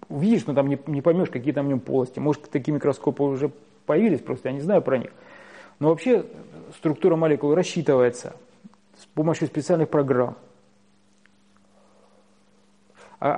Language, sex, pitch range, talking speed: Russian, male, 140-170 Hz, 140 wpm